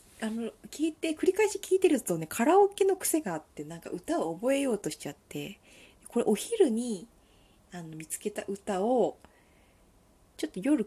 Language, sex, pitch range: Japanese, female, 180-290 Hz